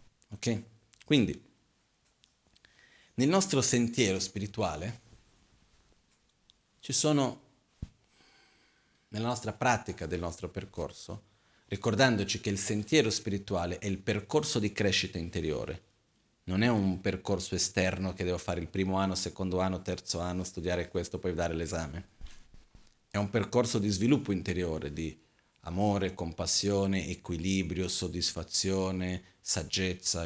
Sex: male